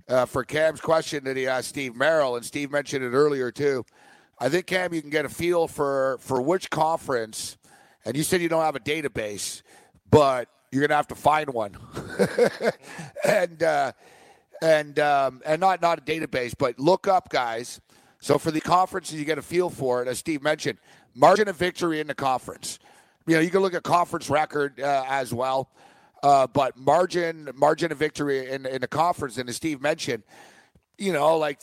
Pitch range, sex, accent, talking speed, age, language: 130-160 Hz, male, American, 195 wpm, 50-69, English